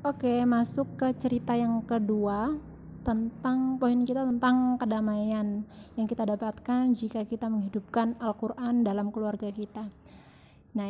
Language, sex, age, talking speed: English, female, 20-39, 125 wpm